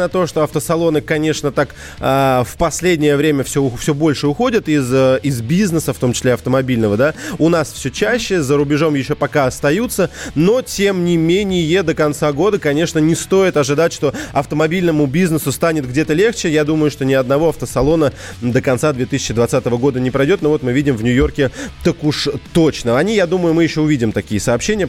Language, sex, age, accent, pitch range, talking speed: Russian, male, 20-39, native, 140-175 Hz, 180 wpm